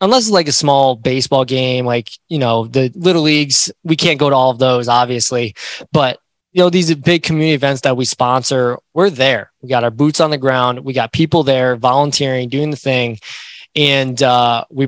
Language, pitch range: English, 125-145 Hz